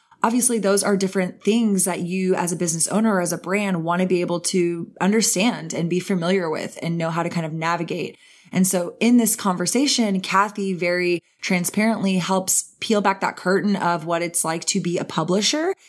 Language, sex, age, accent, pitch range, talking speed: English, female, 20-39, American, 170-200 Hz, 200 wpm